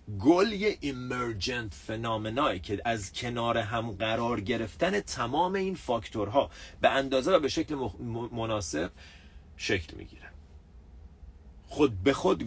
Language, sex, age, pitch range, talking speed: Persian, male, 40-59, 95-135 Hz, 120 wpm